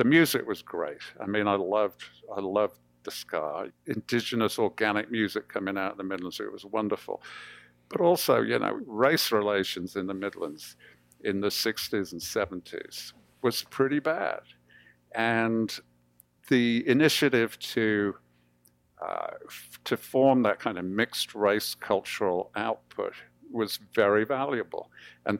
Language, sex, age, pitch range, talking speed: English, male, 50-69, 90-120 Hz, 135 wpm